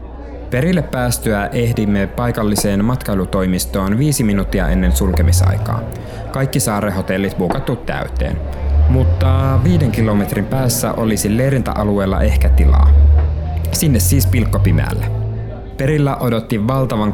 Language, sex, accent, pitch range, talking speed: Finnish, male, native, 90-115 Hz, 95 wpm